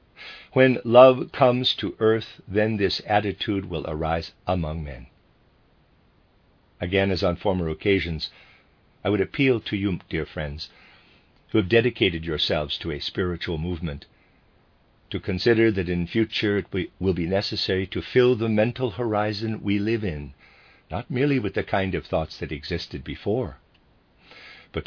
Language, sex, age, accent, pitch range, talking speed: English, male, 50-69, American, 85-110 Hz, 145 wpm